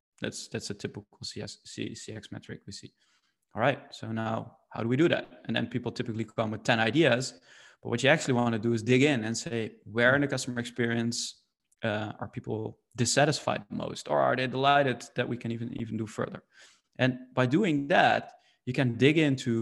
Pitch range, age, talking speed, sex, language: 115-130 Hz, 20-39, 205 wpm, male, English